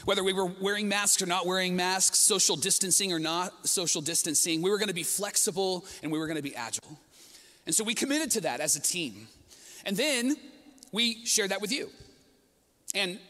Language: English